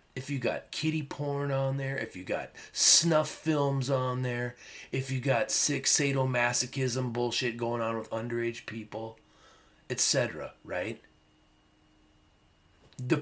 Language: English